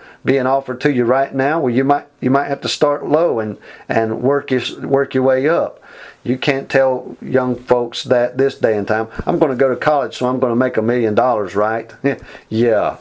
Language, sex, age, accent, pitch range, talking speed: English, male, 50-69, American, 115-140 Hz, 225 wpm